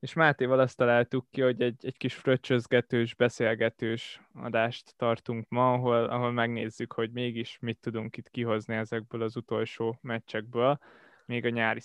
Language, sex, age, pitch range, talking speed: Hungarian, male, 20-39, 115-130 Hz, 150 wpm